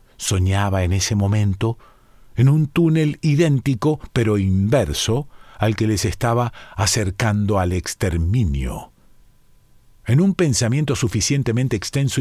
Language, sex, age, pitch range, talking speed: Spanish, male, 50-69, 105-135 Hz, 110 wpm